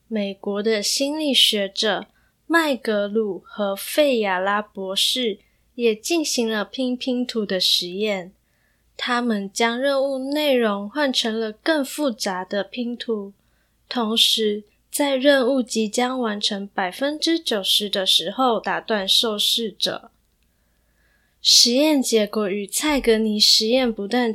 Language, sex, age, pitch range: Chinese, female, 10-29, 205-265 Hz